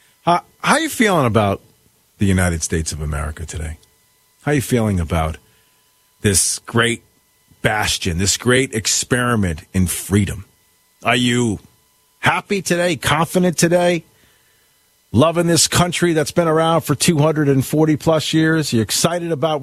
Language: English